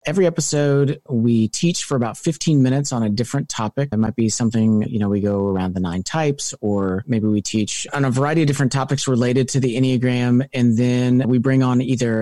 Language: English